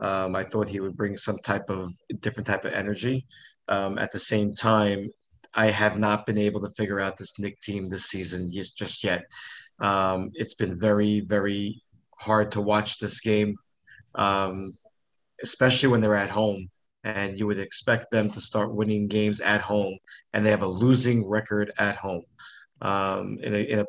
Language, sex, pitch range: English, male, 100-110 Hz